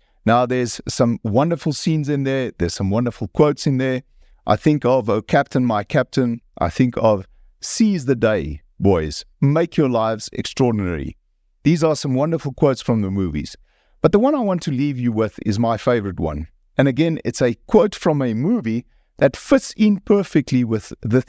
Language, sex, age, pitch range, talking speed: English, male, 50-69, 105-155 Hz, 185 wpm